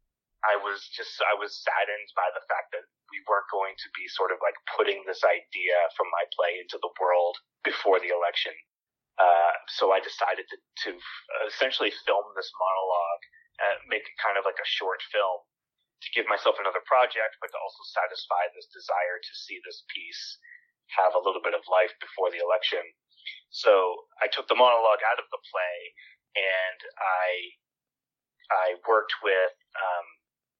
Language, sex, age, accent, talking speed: English, male, 30-49, American, 175 wpm